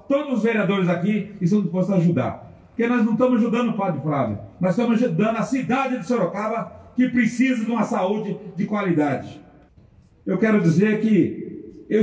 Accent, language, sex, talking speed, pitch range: Brazilian, Portuguese, male, 175 wpm, 185-255 Hz